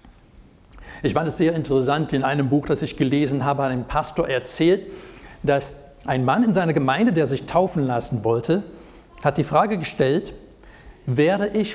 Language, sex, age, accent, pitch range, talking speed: German, male, 60-79, German, 130-170 Hz, 165 wpm